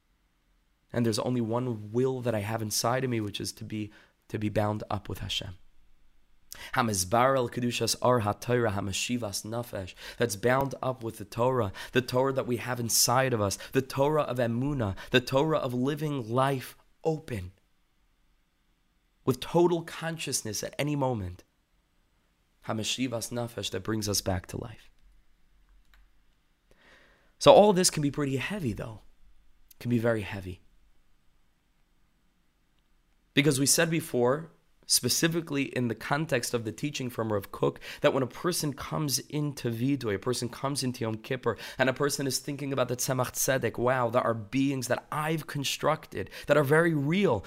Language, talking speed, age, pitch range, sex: English, 150 wpm, 20-39, 110-140 Hz, male